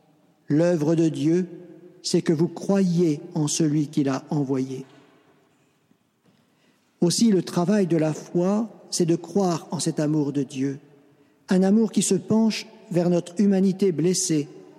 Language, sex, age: French, male, 50-69